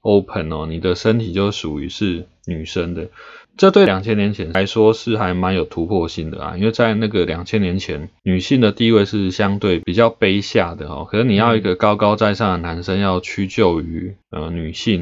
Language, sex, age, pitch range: Chinese, male, 20-39, 90-110 Hz